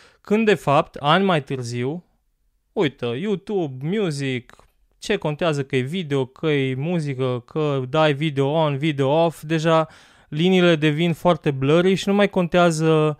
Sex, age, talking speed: male, 20-39, 145 wpm